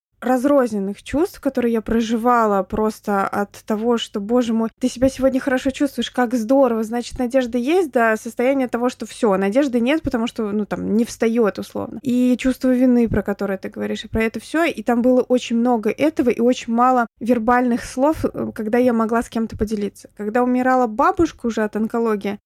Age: 20-39